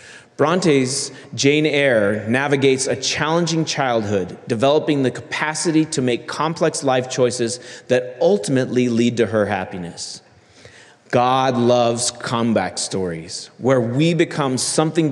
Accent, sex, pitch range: American, male, 120-155 Hz